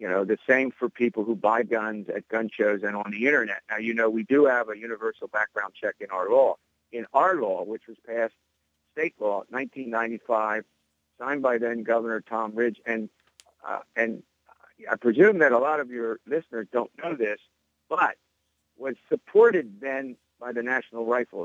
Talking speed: 185 wpm